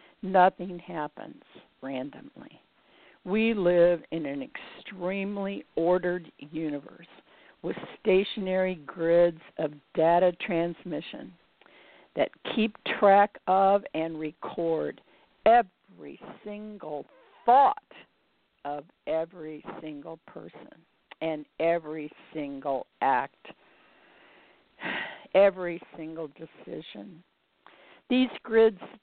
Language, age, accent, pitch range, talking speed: English, 60-79, American, 165-220 Hz, 80 wpm